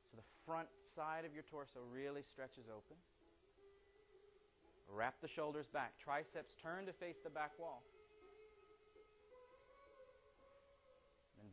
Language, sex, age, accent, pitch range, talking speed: English, male, 30-49, American, 130-170 Hz, 115 wpm